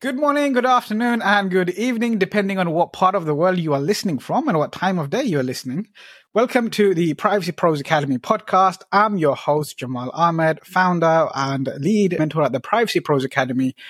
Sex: male